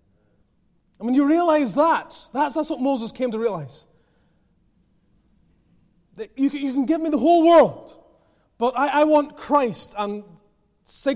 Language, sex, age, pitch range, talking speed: English, male, 30-49, 175-245 Hz, 160 wpm